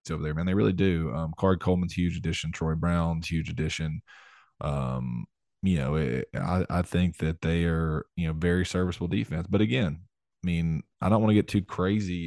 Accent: American